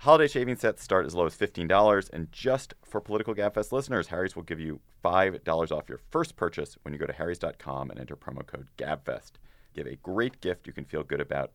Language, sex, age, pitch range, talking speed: English, male, 30-49, 70-105 Hz, 220 wpm